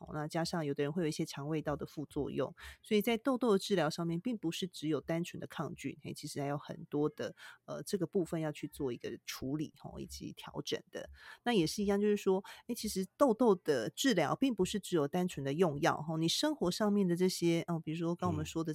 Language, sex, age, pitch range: Chinese, female, 30-49, 150-190 Hz